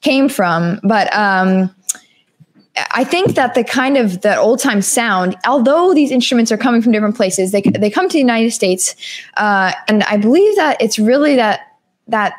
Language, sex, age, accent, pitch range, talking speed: English, female, 20-39, American, 200-255 Hz, 185 wpm